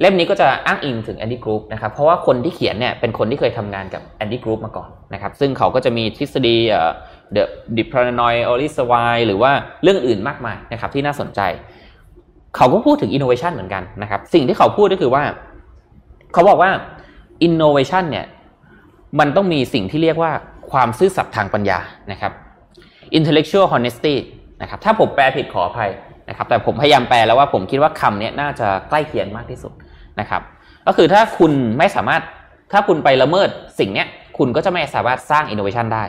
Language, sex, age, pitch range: Thai, male, 20-39, 105-145 Hz